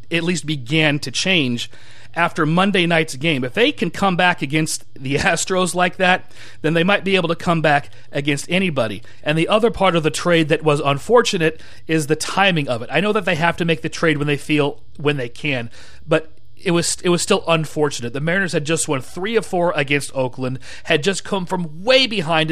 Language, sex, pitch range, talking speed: English, male, 145-190 Hz, 220 wpm